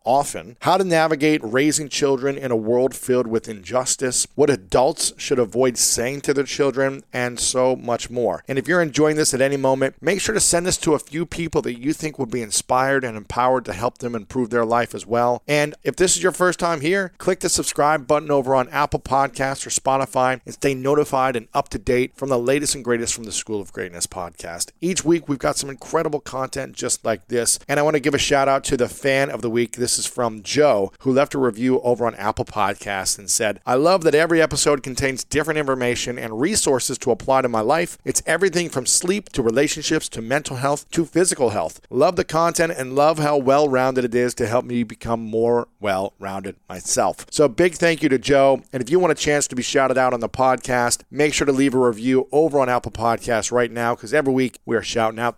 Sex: male